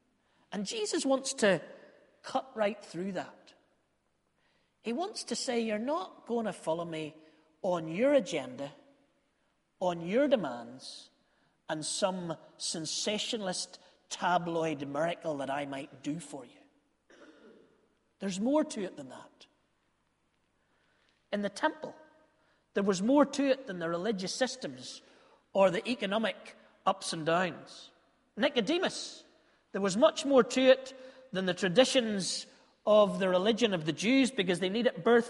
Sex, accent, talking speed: male, British, 135 wpm